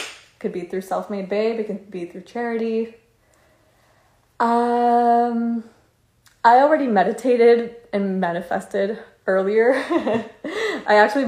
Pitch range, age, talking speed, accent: 185-235 Hz, 20-39, 105 wpm, American